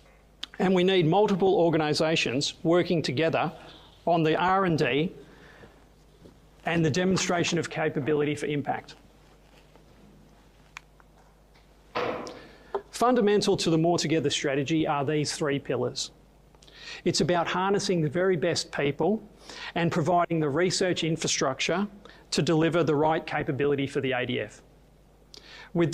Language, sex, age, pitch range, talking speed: English, male, 40-59, 155-185 Hz, 110 wpm